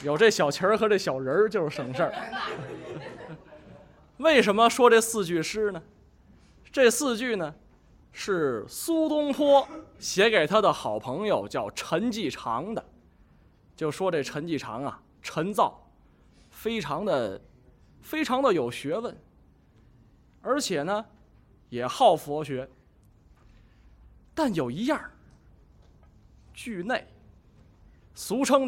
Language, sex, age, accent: Chinese, male, 20-39, native